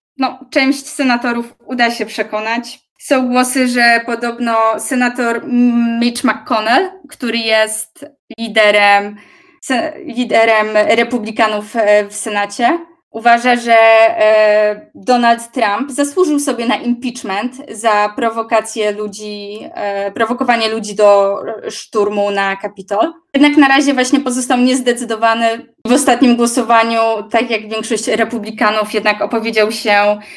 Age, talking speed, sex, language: 20-39, 105 wpm, female, Polish